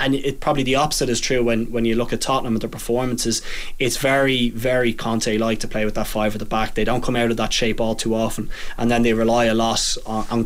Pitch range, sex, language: 115-130 Hz, male, English